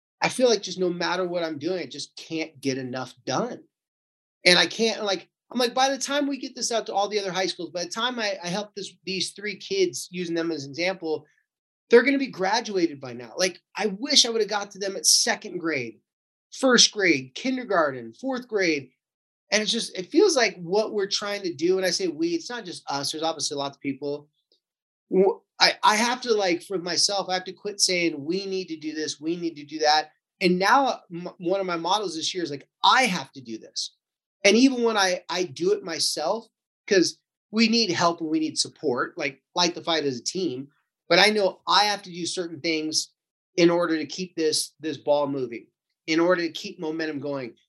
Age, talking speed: 30-49, 230 wpm